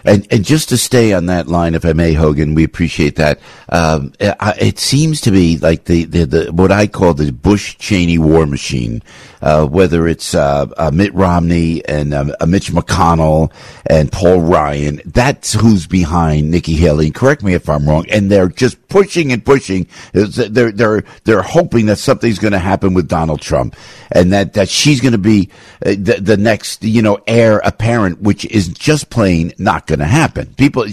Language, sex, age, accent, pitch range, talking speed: English, male, 60-79, American, 85-140 Hz, 195 wpm